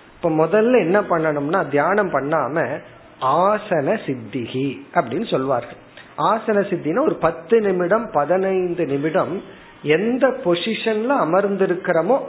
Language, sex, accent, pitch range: Tamil, male, native, 150-210 Hz